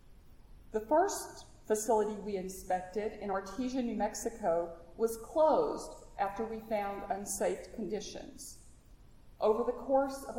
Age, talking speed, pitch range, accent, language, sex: 50-69, 115 wpm, 205-255 Hz, American, English, female